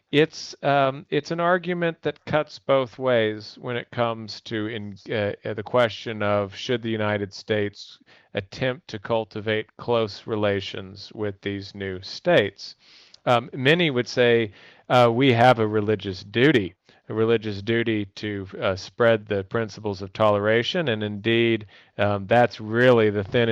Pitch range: 105-125 Hz